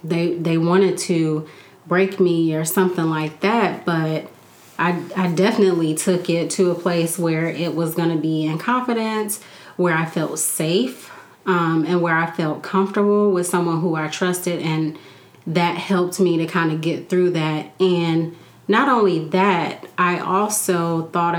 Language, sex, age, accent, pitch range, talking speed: English, female, 30-49, American, 165-195 Hz, 165 wpm